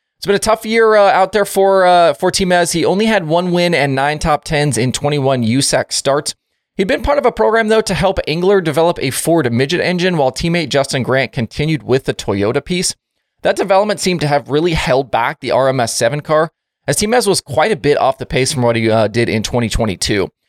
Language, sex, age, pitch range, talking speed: English, male, 20-39, 125-180 Hz, 225 wpm